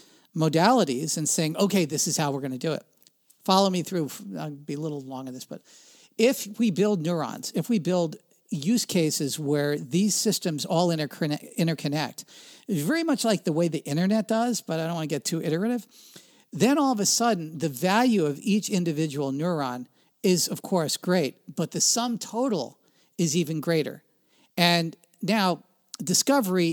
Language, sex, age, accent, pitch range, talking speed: English, male, 50-69, American, 155-205 Hz, 175 wpm